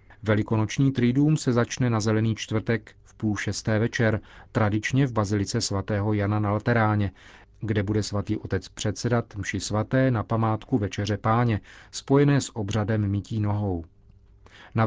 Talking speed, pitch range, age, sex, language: 140 wpm, 100-125 Hz, 40-59, male, Czech